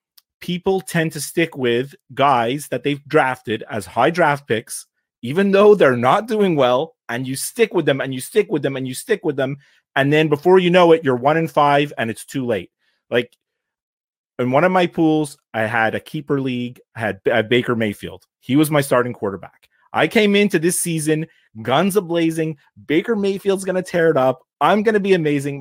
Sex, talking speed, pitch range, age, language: male, 210 wpm, 130-165 Hz, 30-49, English